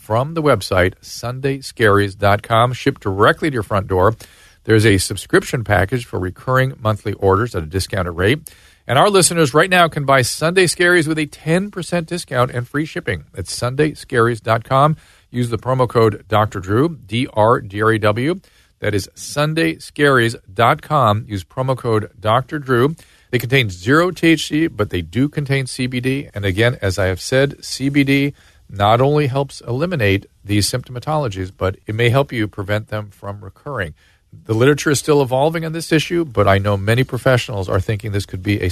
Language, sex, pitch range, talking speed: English, male, 100-140 Hz, 165 wpm